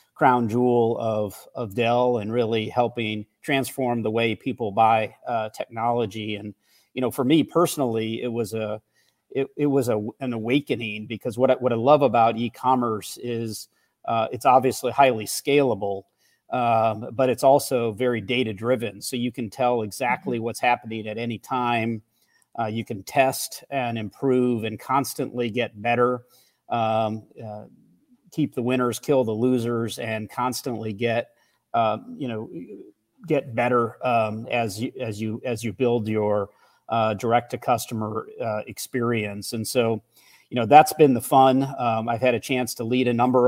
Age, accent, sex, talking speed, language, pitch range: 40-59, American, male, 165 wpm, English, 110-125 Hz